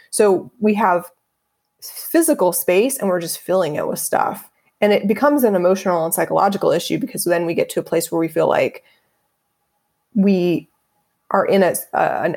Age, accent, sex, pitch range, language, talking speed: 20-39, American, female, 180-260 Hz, English, 175 wpm